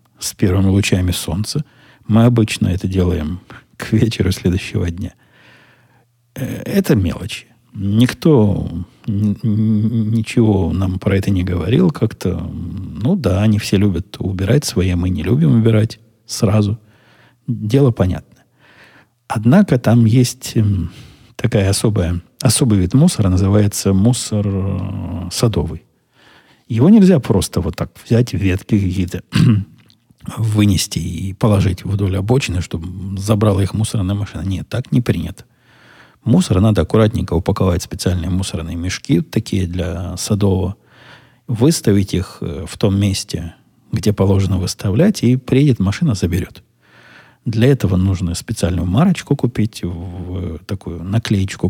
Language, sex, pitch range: Russian, male, 95-120 Hz